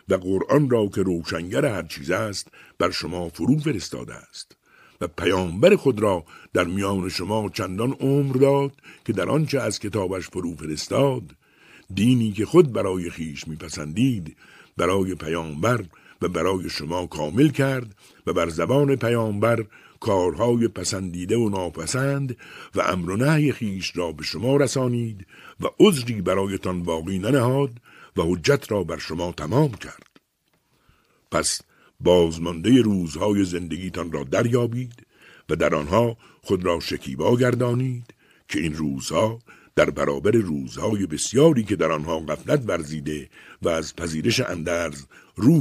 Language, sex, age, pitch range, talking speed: Persian, male, 60-79, 85-125 Hz, 135 wpm